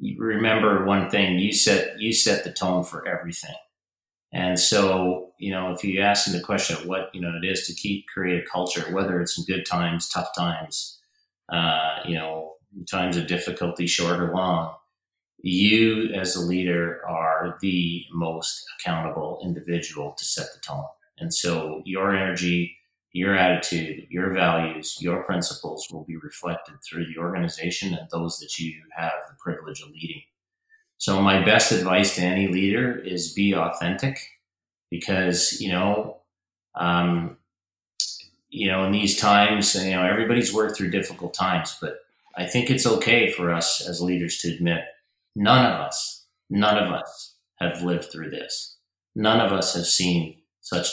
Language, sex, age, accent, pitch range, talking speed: English, male, 30-49, American, 85-100 Hz, 165 wpm